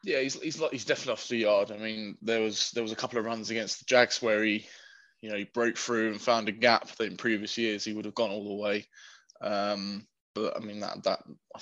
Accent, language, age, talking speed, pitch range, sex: British, English, 20-39, 260 wpm, 105-120 Hz, male